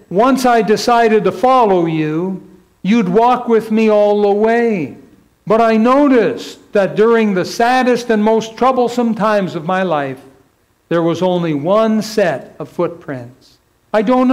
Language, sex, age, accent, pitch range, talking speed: English, male, 60-79, American, 130-210 Hz, 150 wpm